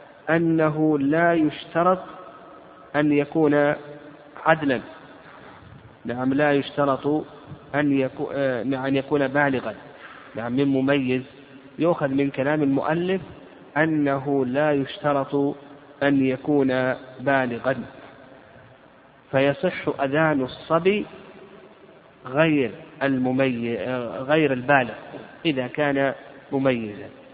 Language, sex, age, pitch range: Arabic, male, 50-69, 135-155 Hz